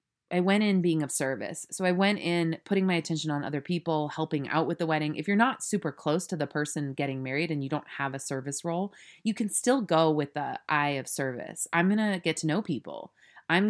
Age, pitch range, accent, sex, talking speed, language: 30-49, 145-175 Hz, American, female, 240 wpm, English